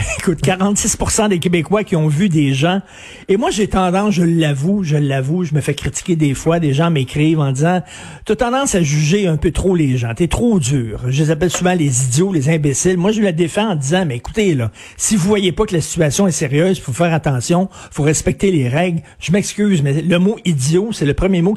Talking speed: 235 wpm